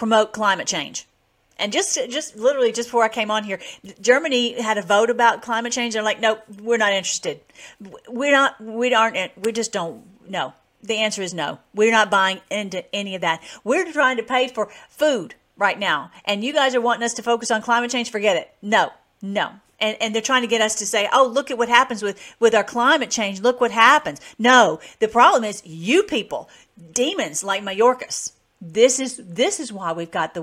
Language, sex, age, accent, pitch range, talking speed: English, female, 50-69, American, 195-240 Hz, 210 wpm